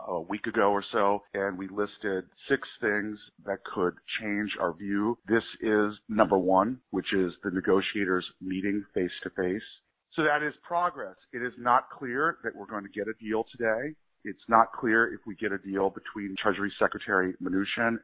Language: English